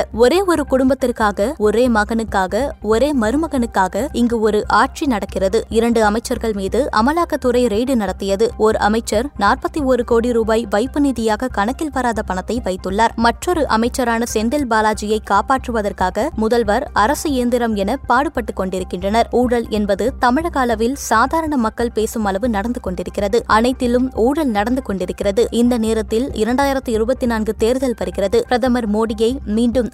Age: 20-39